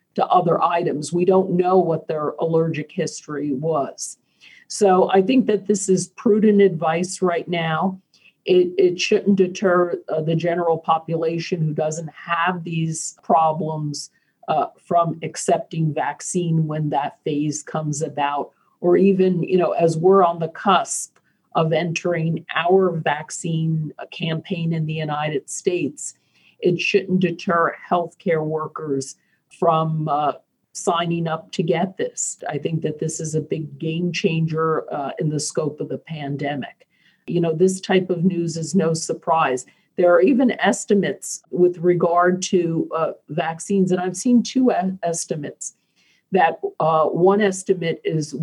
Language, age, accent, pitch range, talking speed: English, 50-69, American, 160-185 Hz, 145 wpm